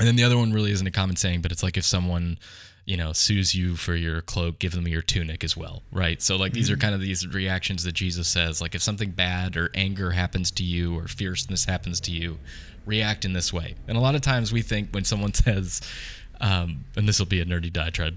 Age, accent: 20-39, American